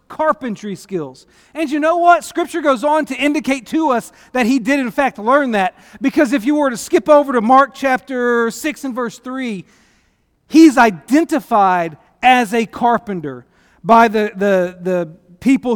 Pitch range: 195-270 Hz